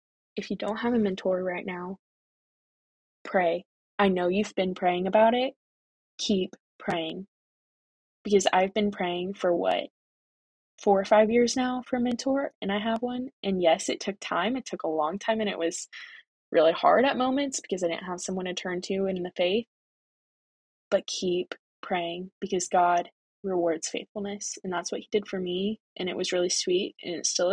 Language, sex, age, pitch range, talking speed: English, female, 20-39, 180-220 Hz, 185 wpm